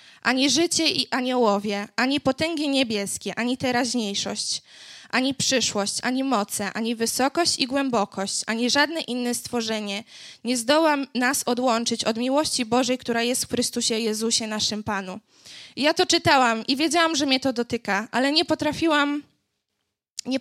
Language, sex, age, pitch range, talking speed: Polish, female, 20-39, 230-295 Hz, 140 wpm